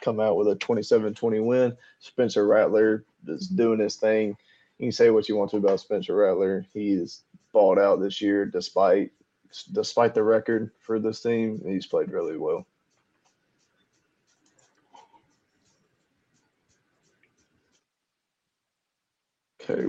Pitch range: 105-150 Hz